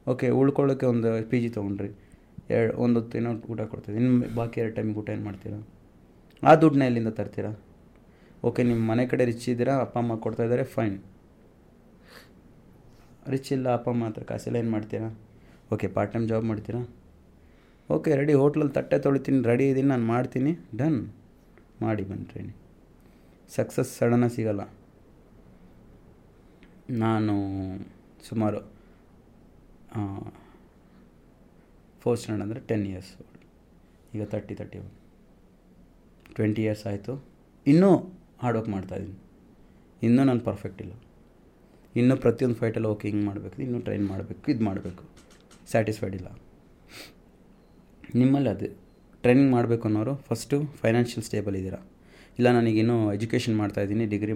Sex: male